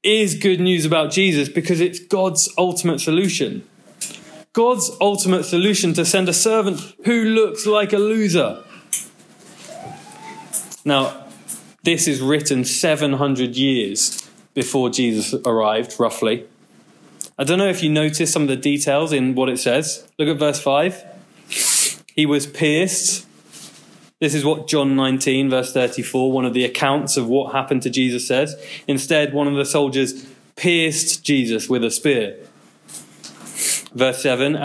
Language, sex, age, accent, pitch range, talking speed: English, male, 20-39, British, 130-170 Hz, 140 wpm